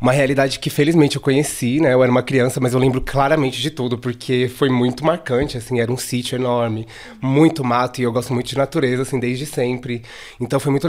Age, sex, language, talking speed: 20-39, male, Portuguese, 220 wpm